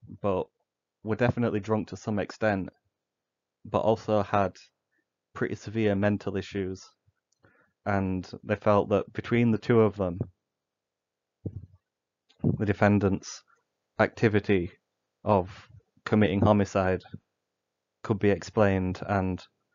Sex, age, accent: male, 20-39, British